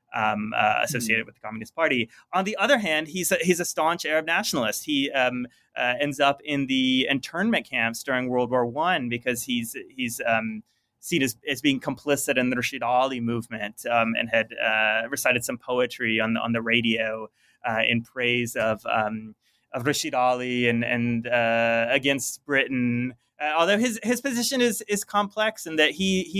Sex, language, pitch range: male, English, 115-145 Hz